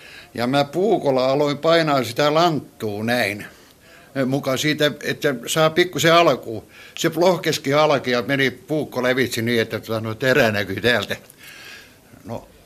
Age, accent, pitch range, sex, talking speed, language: 60-79, native, 115-155 Hz, male, 135 wpm, Finnish